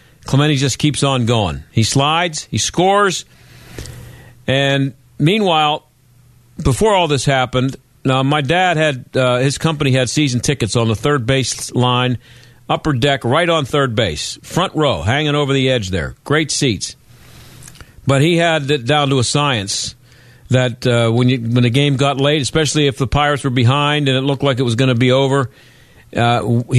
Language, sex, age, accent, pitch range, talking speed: English, male, 50-69, American, 120-145 Hz, 175 wpm